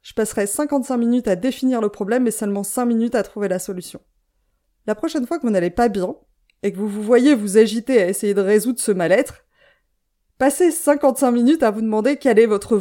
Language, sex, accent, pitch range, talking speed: French, female, French, 205-255 Hz, 215 wpm